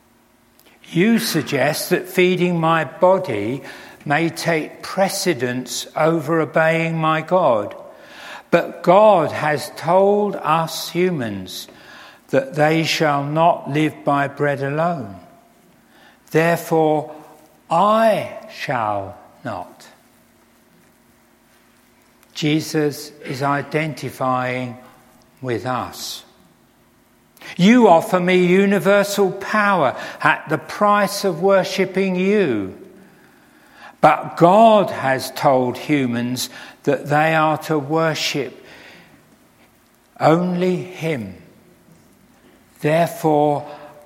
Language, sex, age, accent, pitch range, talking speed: English, male, 60-79, British, 130-185 Hz, 80 wpm